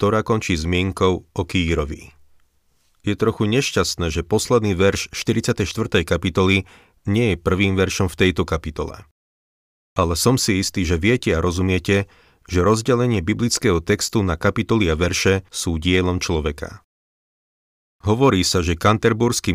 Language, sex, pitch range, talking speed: Slovak, male, 80-105 Hz, 130 wpm